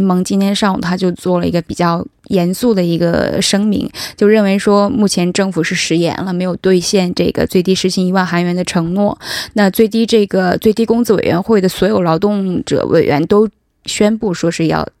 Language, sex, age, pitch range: Korean, female, 20-39, 180-210 Hz